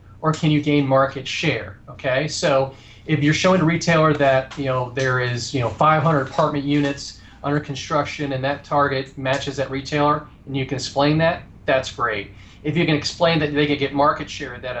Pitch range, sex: 125-145 Hz, male